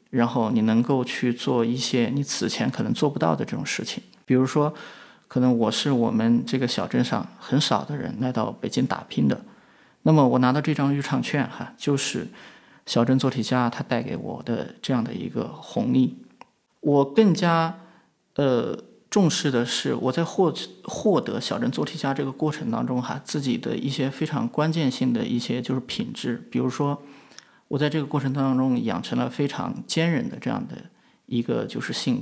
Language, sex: Chinese, male